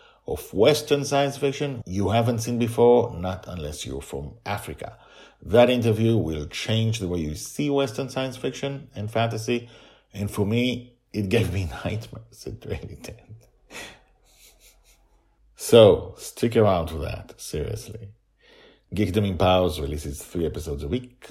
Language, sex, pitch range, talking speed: English, male, 95-130 Hz, 140 wpm